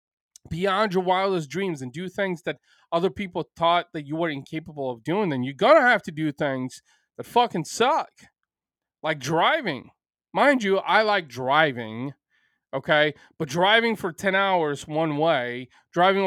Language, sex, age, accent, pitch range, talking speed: English, male, 20-39, American, 145-190 Hz, 160 wpm